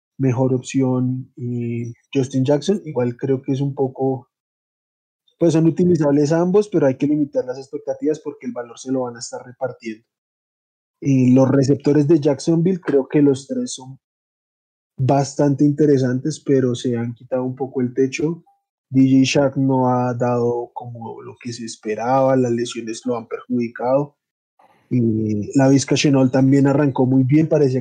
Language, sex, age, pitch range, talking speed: Spanish, male, 20-39, 125-145 Hz, 160 wpm